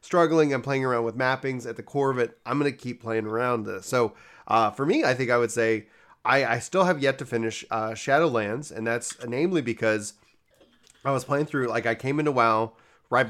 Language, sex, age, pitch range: English, male, 30-49, 115-135 Hz